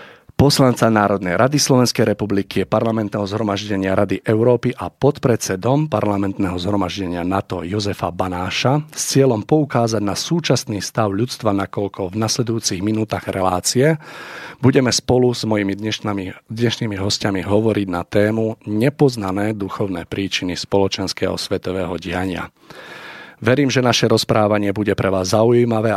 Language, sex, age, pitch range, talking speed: Slovak, male, 40-59, 95-115 Hz, 120 wpm